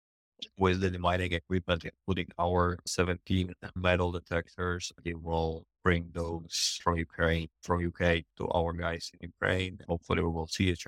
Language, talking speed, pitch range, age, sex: English, 150 wpm, 85-95 Hz, 20-39, male